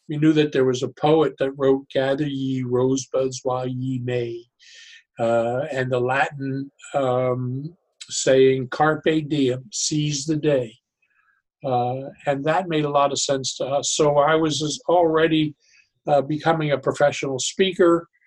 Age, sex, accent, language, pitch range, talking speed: 60-79, male, American, English, 130-155 Hz, 150 wpm